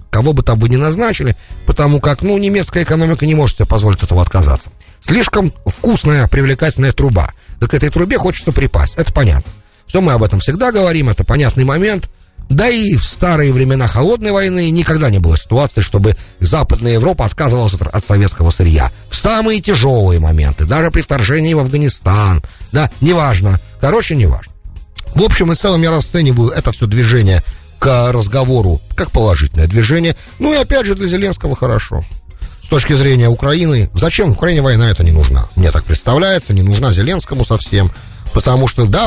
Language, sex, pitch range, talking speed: English, male, 95-145 Hz, 170 wpm